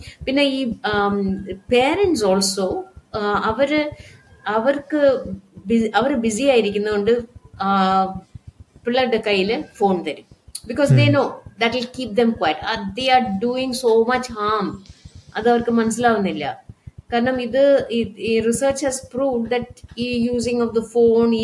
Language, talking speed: Malayalam, 125 wpm